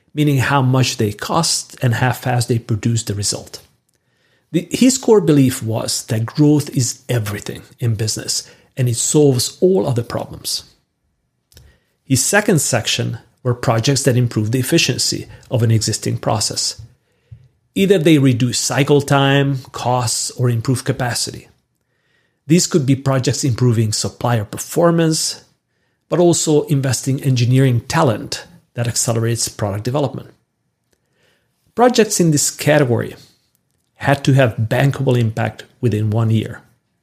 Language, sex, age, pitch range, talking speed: English, male, 40-59, 115-140 Hz, 130 wpm